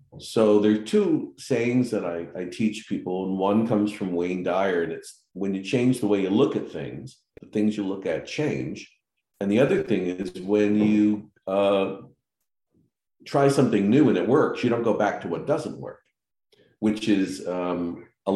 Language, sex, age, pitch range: English, male, 50-69, 95-115 Hz